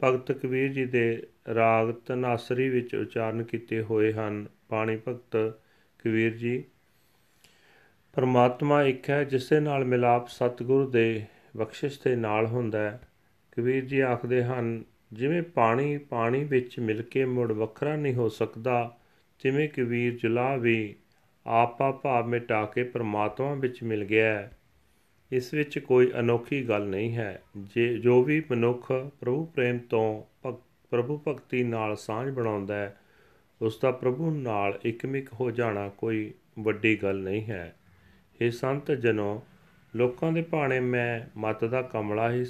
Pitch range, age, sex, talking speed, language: 110-130 Hz, 40-59, male, 125 wpm, Punjabi